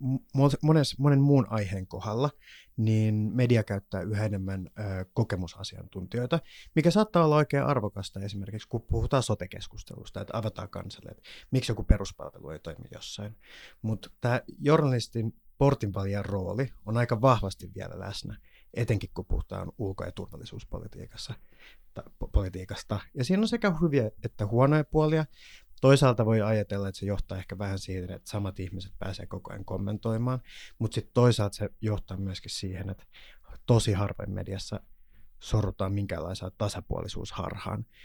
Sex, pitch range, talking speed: male, 95-120 Hz, 135 wpm